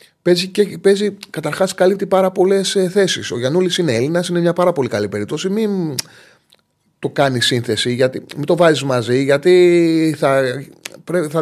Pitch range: 135-180 Hz